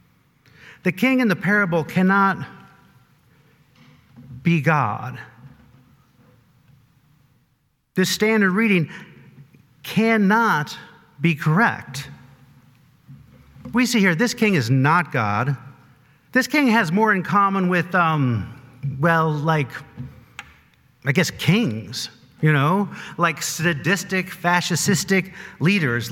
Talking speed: 95 wpm